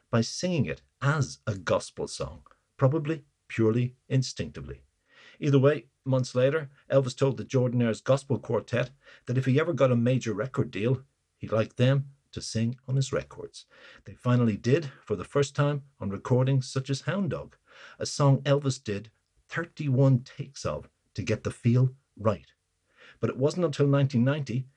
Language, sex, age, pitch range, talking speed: English, male, 50-69, 115-140 Hz, 160 wpm